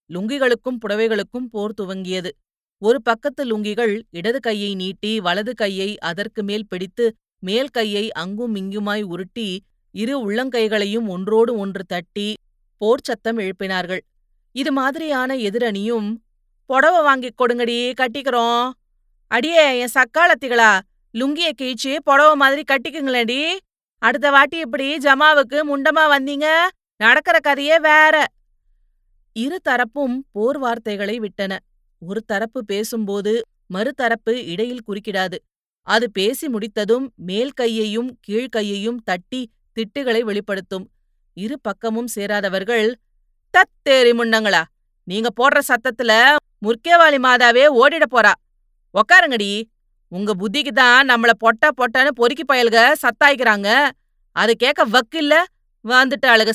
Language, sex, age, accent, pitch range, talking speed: Tamil, female, 30-49, native, 205-270 Hz, 100 wpm